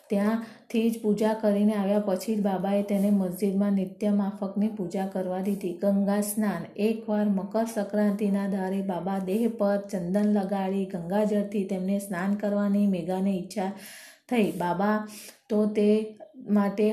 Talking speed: 125 wpm